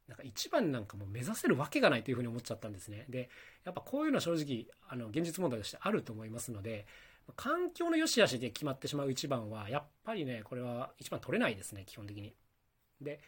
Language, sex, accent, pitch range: Japanese, male, native, 115-180 Hz